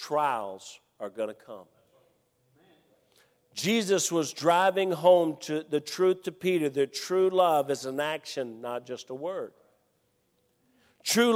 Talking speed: 130 wpm